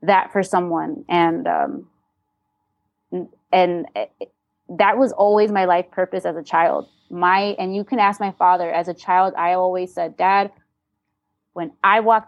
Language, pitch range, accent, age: English, 175-210 Hz, American, 20-39